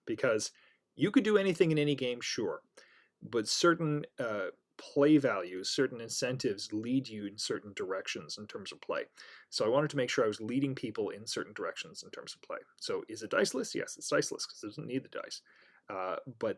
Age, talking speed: 30-49, 205 wpm